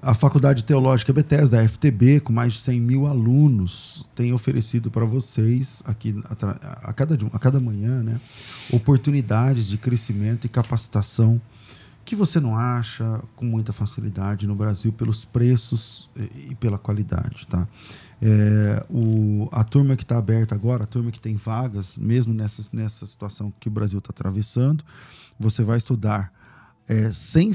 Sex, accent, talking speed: male, Brazilian, 155 wpm